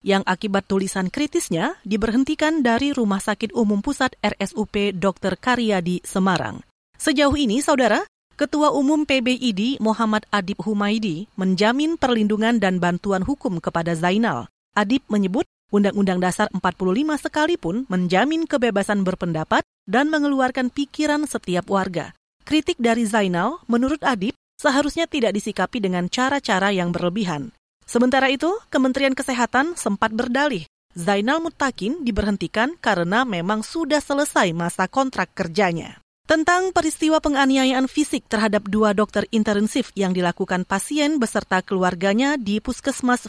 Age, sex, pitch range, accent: 30-49, female, 200-275 Hz, native